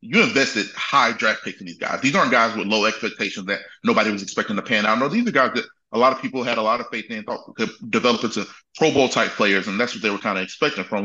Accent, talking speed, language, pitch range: American, 290 wpm, English, 100-135 Hz